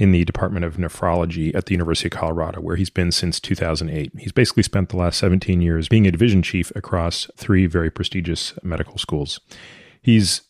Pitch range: 85-100 Hz